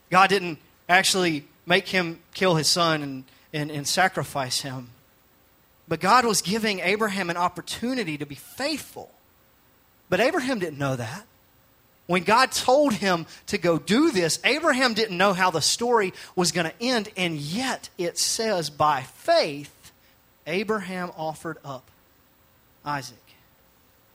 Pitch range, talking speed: 160-220 Hz, 140 wpm